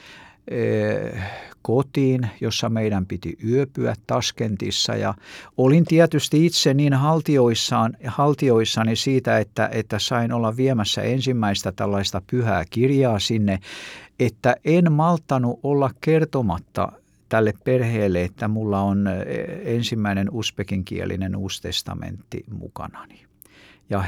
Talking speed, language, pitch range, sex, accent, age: 95 wpm, Finnish, 100-130 Hz, male, native, 60-79